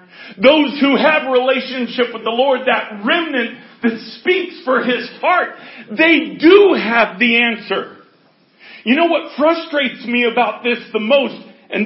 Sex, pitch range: male, 235-295 Hz